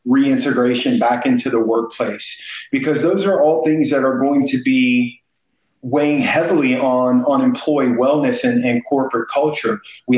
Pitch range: 135-200 Hz